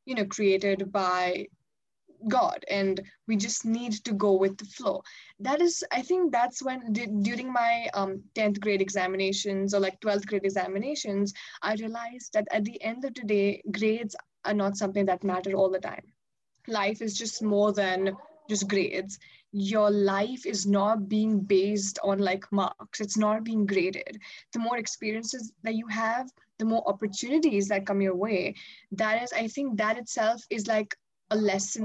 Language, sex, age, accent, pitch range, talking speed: English, female, 20-39, Indian, 200-235 Hz, 175 wpm